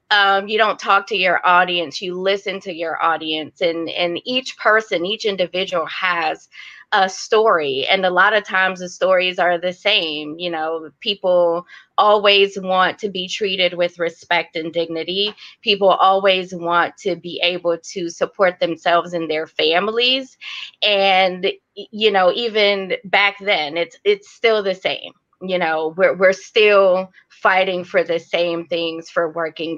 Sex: female